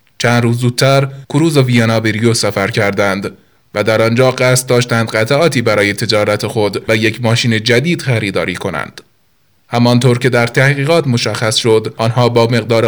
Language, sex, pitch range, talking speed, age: Persian, male, 110-130 Hz, 150 wpm, 20-39